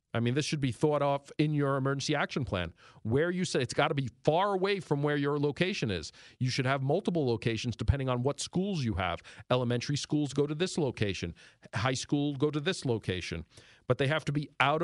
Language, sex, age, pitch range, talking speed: English, male, 40-59, 110-150 Hz, 225 wpm